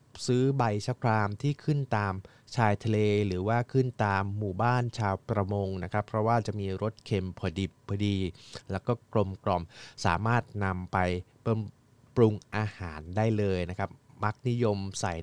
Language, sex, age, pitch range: Thai, male, 20-39, 95-120 Hz